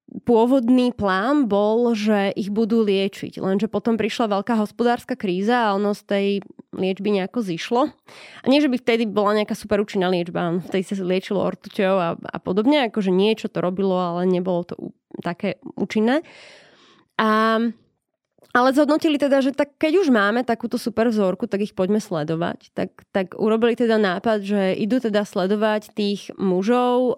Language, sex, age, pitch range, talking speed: Slovak, female, 20-39, 195-225 Hz, 165 wpm